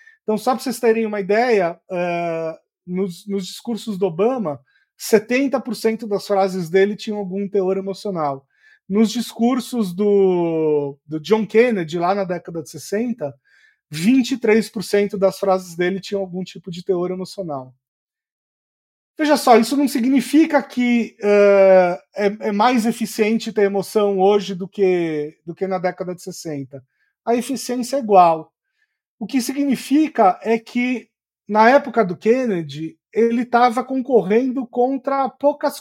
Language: Portuguese